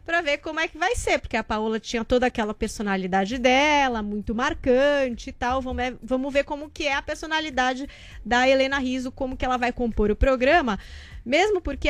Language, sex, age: Portuguese, female, 20-39